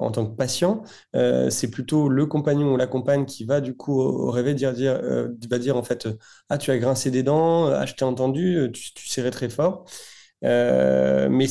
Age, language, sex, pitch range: 20-39, French, male, 125-155 Hz